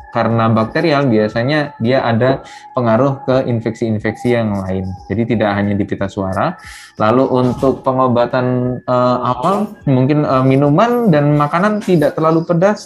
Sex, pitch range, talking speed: male, 115-150 Hz, 130 wpm